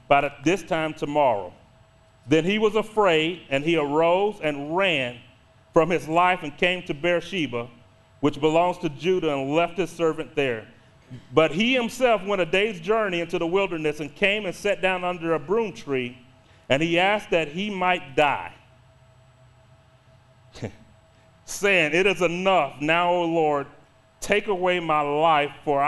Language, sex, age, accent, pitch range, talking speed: English, male, 40-59, American, 130-195 Hz, 160 wpm